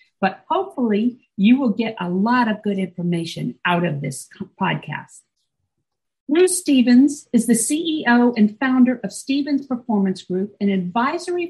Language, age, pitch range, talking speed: English, 50-69, 210-275 Hz, 140 wpm